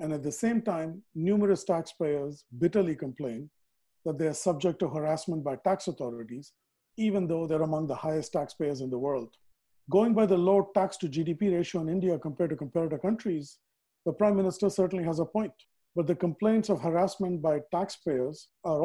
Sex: male